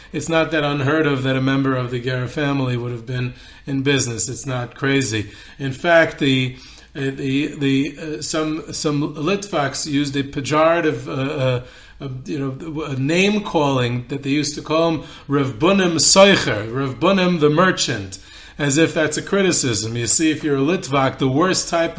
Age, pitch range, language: 30-49, 135-155 Hz, English